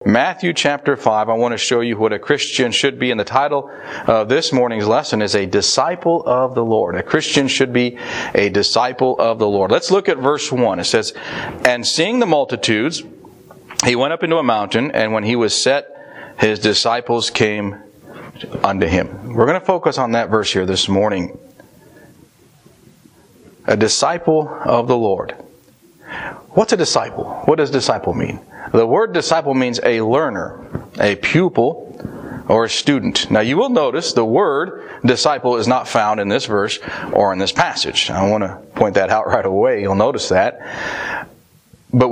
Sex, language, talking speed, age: male, English, 175 wpm, 40-59